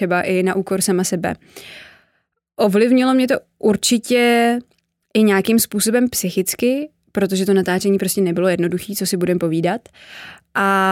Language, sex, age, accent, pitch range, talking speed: Czech, female, 20-39, native, 185-215 Hz, 135 wpm